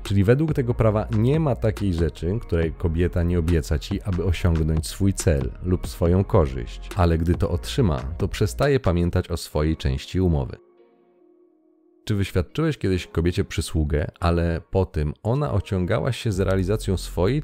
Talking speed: 155 wpm